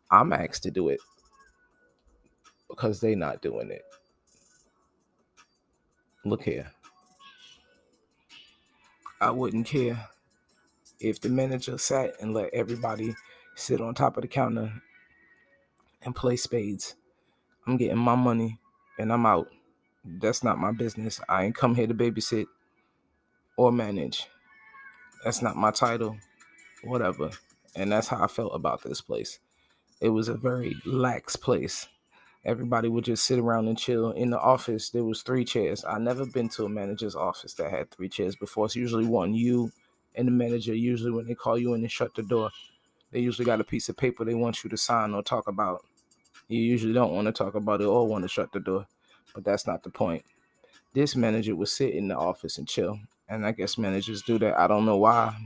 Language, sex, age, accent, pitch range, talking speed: English, male, 20-39, American, 110-125 Hz, 180 wpm